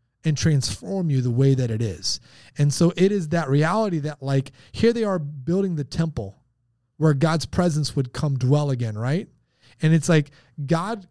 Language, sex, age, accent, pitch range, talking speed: English, male, 30-49, American, 130-175 Hz, 185 wpm